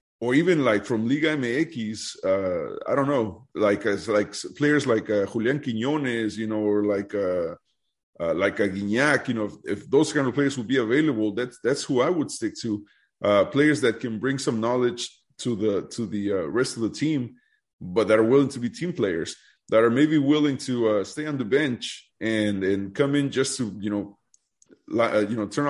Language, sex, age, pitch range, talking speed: English, male, 30-49, 110-140 Hz, 210 wpm